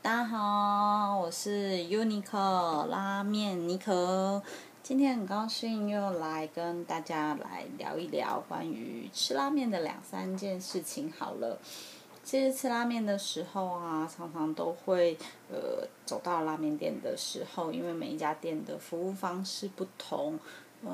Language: Chinese